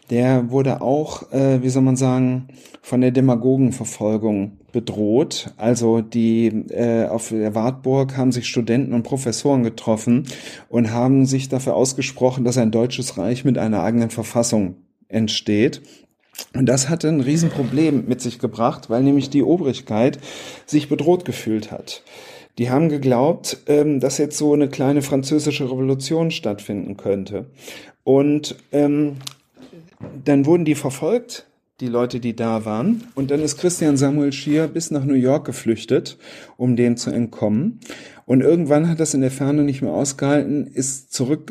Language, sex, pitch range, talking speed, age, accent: German, male, 120-145 Hz, 150 wpm, 40-59, German